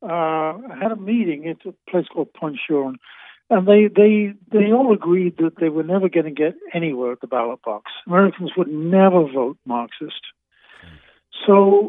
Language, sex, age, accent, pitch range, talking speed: English, male, 60-79, American, 150-205 Hz, 170 wpm